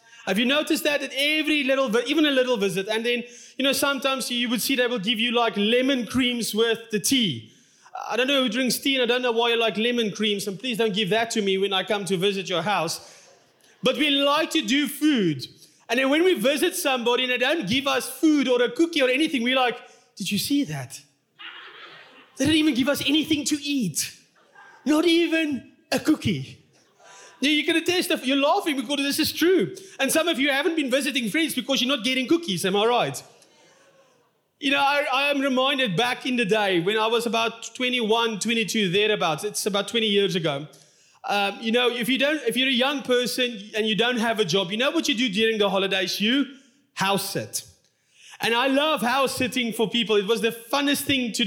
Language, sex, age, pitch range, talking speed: English, male, 30-49, 220-275 Hz, 215 wpm